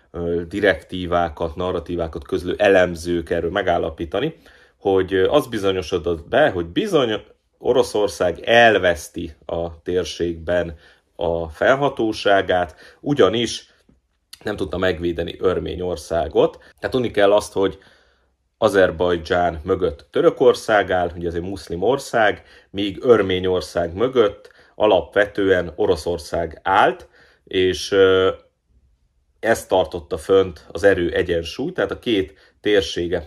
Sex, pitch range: male, 85-95 Hz